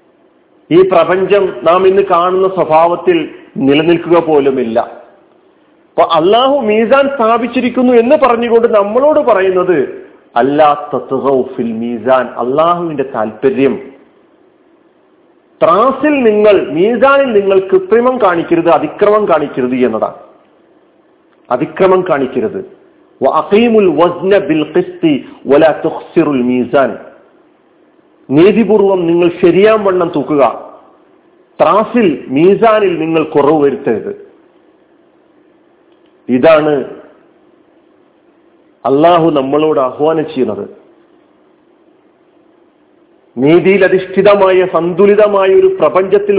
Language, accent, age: Malayalam, native, 40-59